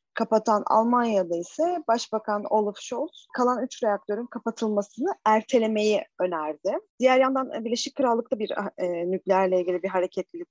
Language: Turkish